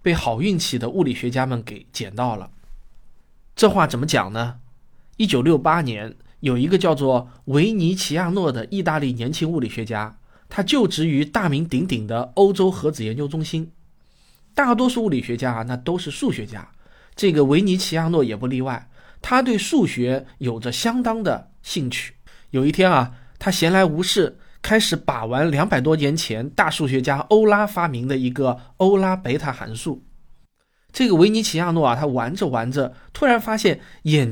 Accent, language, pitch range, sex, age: native, Chinese, 125-190 Hz, male, 20-39